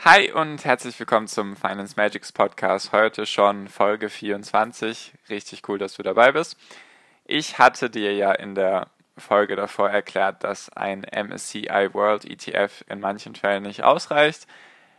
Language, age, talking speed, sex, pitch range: German, 10-29, 140 wpm, male, 100-110 Hz